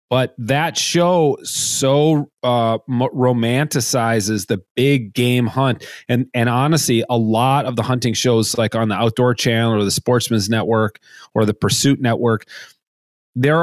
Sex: male